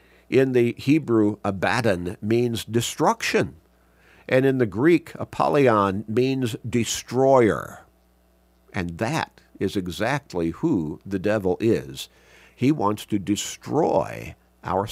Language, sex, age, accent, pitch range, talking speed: English, male, 50-69, American, 90-120 Hz, 105 wpm